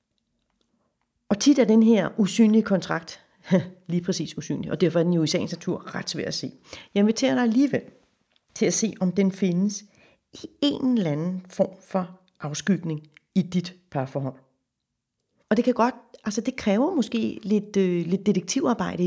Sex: female